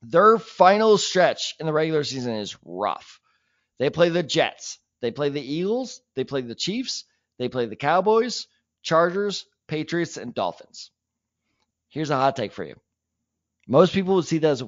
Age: 30-49